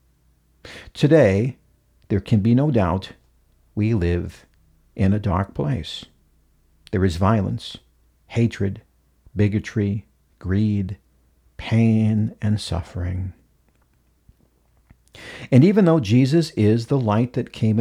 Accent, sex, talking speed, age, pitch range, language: American, male, 100 wpm, 60-79, 90-125 Hz, English